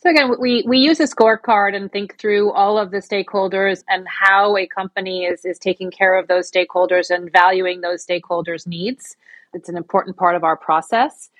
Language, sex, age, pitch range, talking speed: English, female, 30-49, 175-205 Hz, 195 wpm